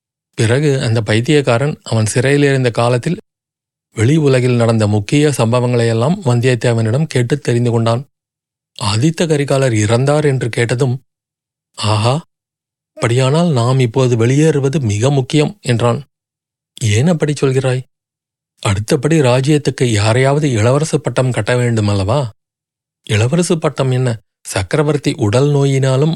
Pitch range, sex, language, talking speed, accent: 120-150 Hz, male, Tamil, 105 wpm, native